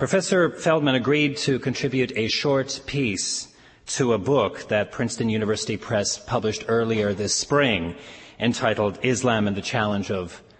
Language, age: English, 40-59